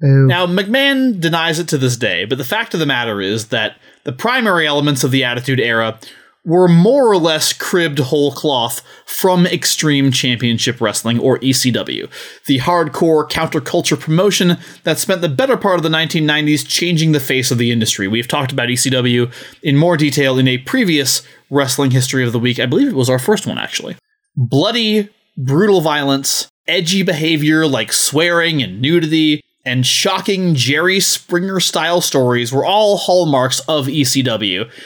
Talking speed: 165 wpm